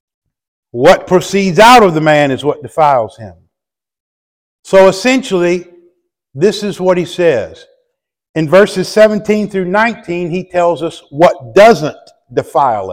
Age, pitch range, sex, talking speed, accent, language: 50-69, 130-175 Hz, male, 130 wpm, American, English